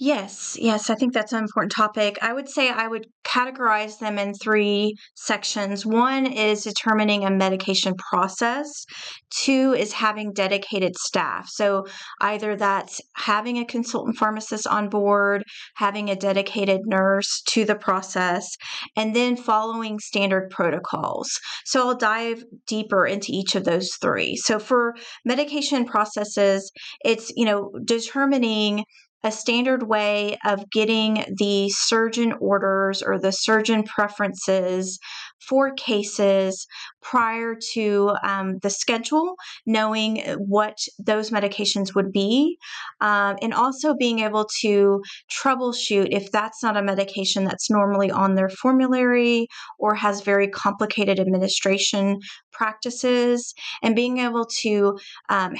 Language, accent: English, American